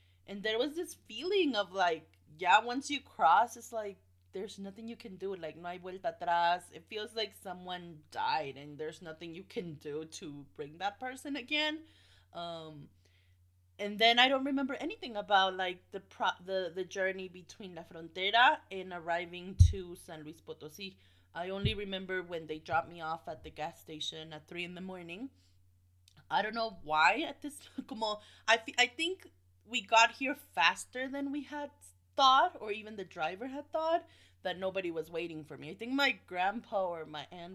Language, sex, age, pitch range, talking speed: English, female, 20-39, 155-225 Hz, 185 wpm